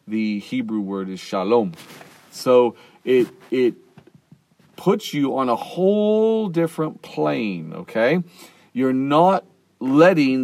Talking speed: 110 wpm